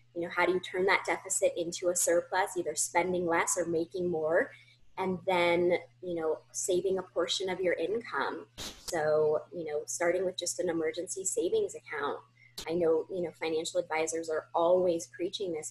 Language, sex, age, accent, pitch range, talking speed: English, female, 20-39, American, 160-195 Hz, 180 wpm